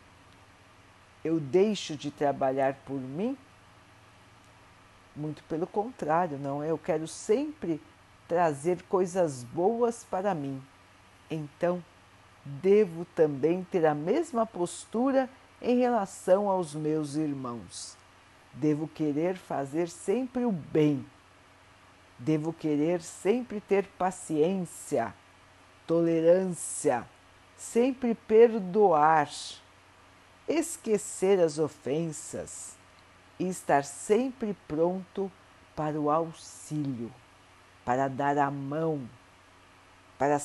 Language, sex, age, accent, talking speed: Portuguese, female, 50-69, Brazilian, 90 wpm